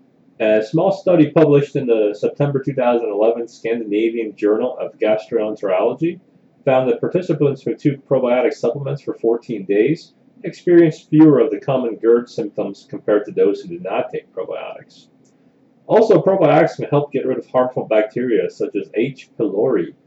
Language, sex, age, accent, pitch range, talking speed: English, male, 30-49, American, 115-180 Hz, 150 wpm